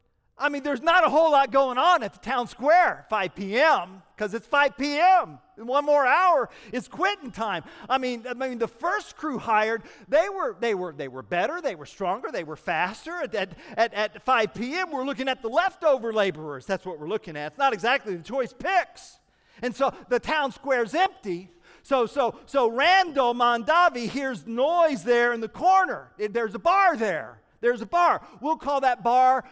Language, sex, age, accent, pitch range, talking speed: English, male, 40-59, American, 190-285 Hz, 195 wpm